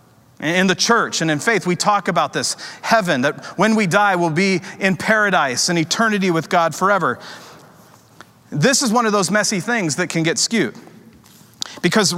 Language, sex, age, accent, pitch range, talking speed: English, male, 40-59, American, 155-205 Hz, 175 wpm